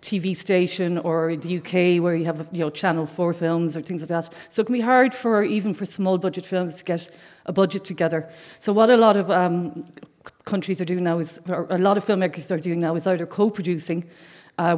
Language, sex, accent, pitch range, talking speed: English, female, Irish, 165-185 Hz, 230 wpm